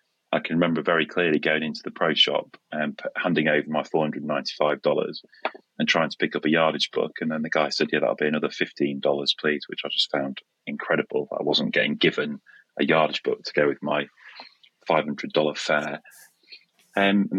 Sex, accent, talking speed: male, British, 205 wpm